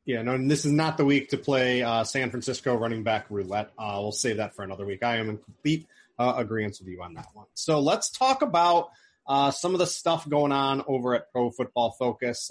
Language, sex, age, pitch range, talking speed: English, male, 30-49, 120-160 Hz, 240 wpm